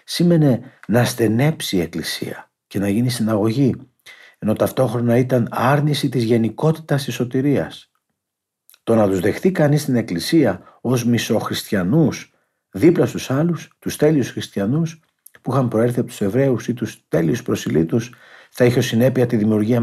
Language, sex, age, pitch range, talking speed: Greek, male, 50-69, 105-145 Hz, 145 wpm